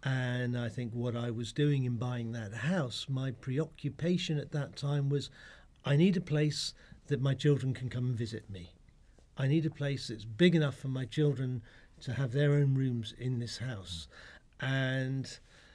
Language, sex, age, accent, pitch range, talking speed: English, male, 50-69, British, 115-140 Hz, 185 wpm